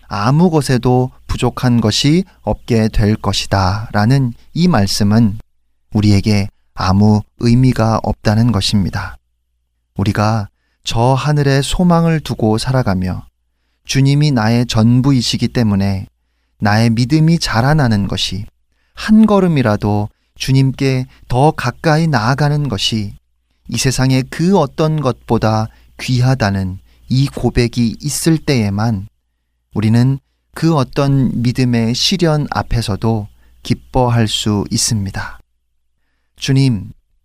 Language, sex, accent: Korean, male, native